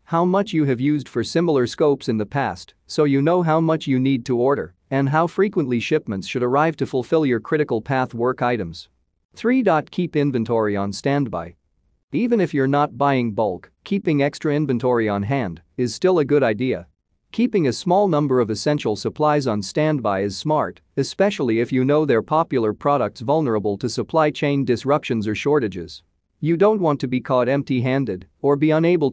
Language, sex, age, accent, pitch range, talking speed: English, male, 40-59, American, 115-150 Hz, 185 wpm